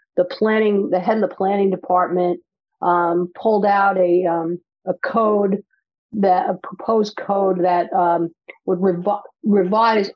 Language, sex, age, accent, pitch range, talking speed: English, female, 50-69, American, 180-210 Hz, 140 wpm